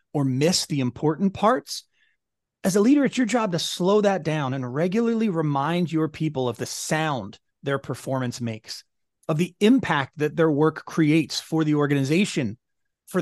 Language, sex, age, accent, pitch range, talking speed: English, male, 30-49, American, 150-205 Hz, 170 wpm